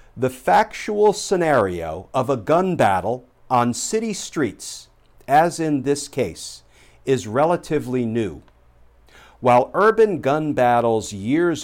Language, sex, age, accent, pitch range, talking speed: English, male, 50-69, American, 110-140 Hz, 115 wpm